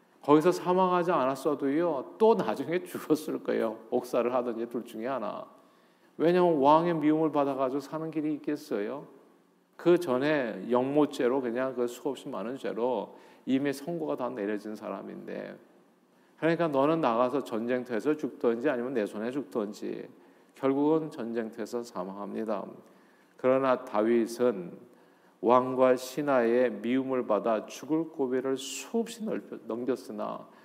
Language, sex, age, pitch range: Korean, male, 40-59, 120-155 Hz